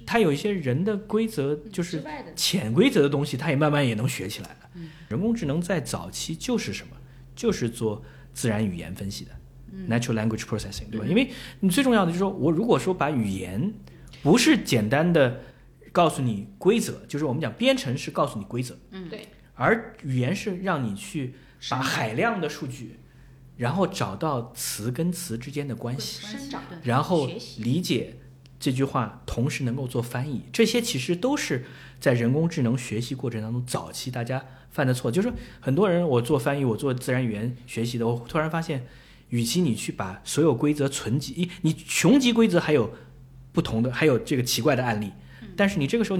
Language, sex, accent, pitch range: Chinese, male, native, 120-165 Hz